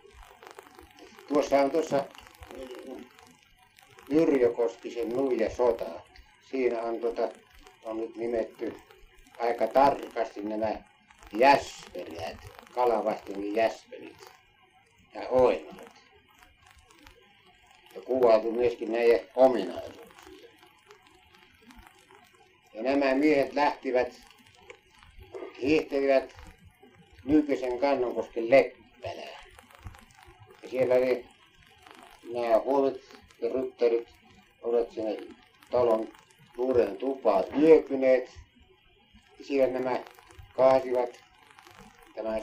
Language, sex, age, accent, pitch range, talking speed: Finnish, male, 60-79, native, 115-135 Hz, 65 wpm